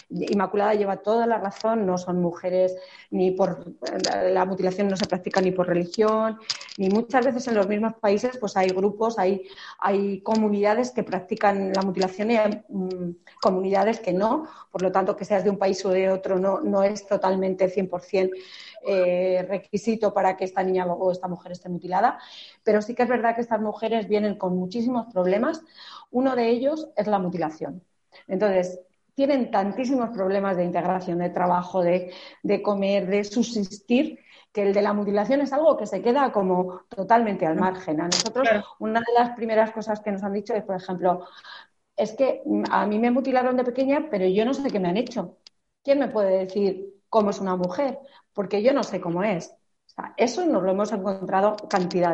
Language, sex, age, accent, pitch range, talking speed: Spanish, female, 30-49, Spanish, 185-220 Hz, 190 wpm